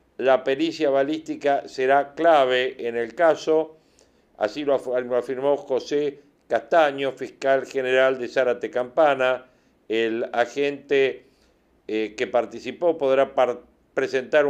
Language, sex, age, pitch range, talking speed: Spanish, male, 50-69, 130-155 Hz, 110 wpm